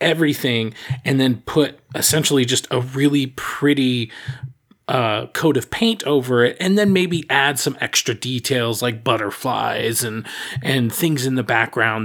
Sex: male